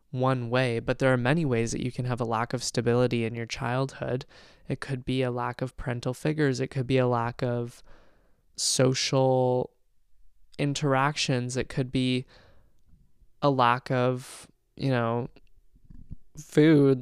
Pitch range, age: 120-140 Hz, 20-39